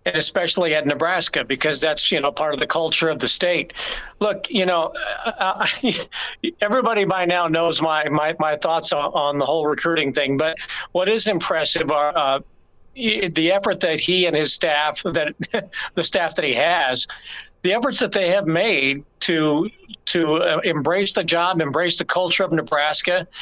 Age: 50-69